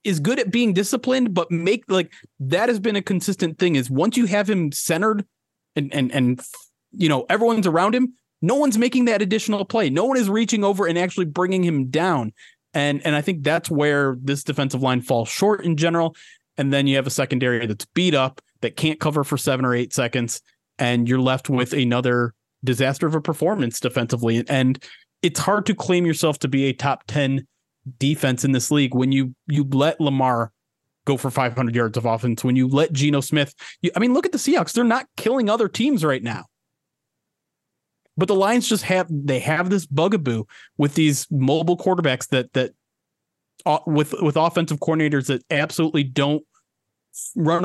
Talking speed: 190 wpm